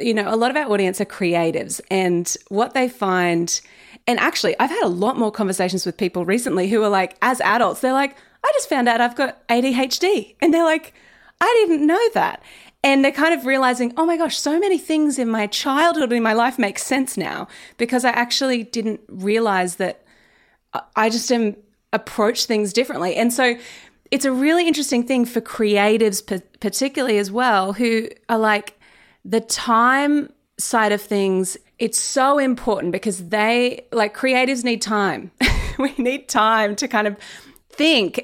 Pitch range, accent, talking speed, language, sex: 205-265 Hz, Australian, 175 wpm, English, female